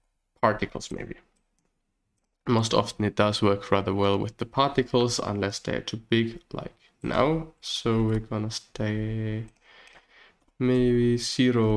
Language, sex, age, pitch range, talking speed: English, male, 20-39, 110-125 Hz, 120 wpm